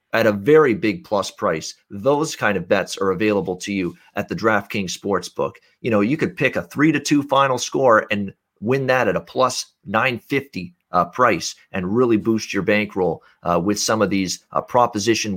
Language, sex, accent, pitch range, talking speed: English, male, American, 100-135 Hz, 195 wpm